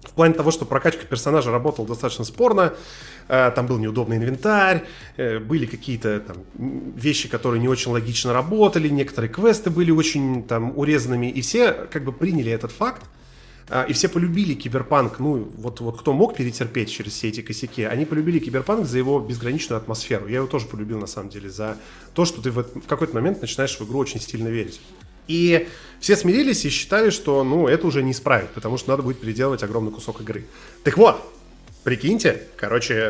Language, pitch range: Russian, 115-150 Hz